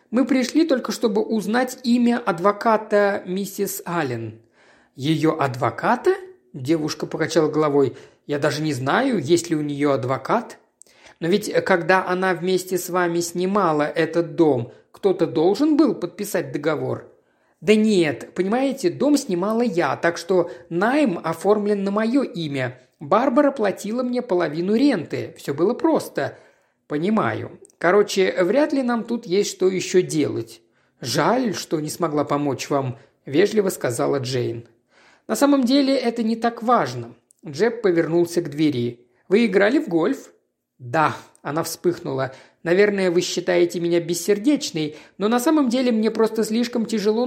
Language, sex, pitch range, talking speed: Russian, male, 160-225 Hz, 140 wpm